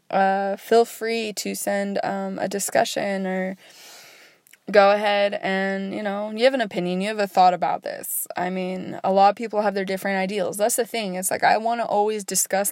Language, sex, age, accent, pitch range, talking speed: English, female, 20-39, American, 175-205 Hz, 210 wpm